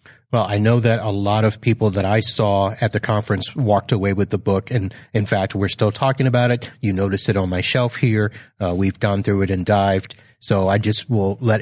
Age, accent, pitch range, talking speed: 30-49, American, 100-120 Hz, 240 wpm